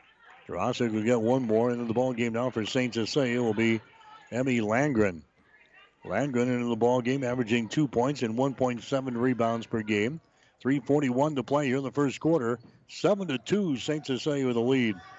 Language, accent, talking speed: English, American, 170 wpm